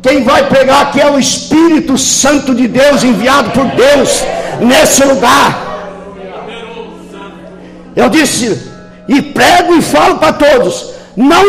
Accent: Brazilian